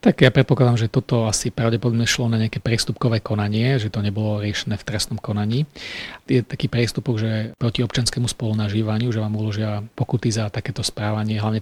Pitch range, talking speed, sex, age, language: 110-125 Hz, 175 wpm, male, 40-59, Slovak